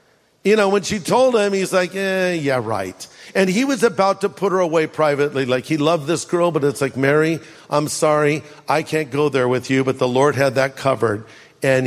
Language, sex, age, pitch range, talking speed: English, male, 50-69, 145-195 Hz, 220 wpm